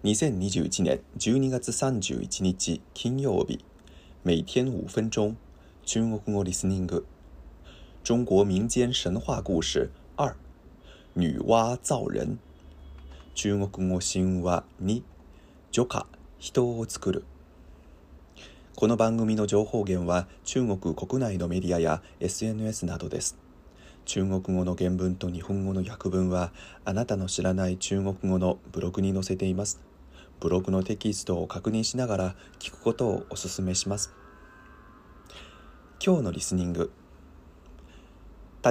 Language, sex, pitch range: Japanese, male, 80-105 Hz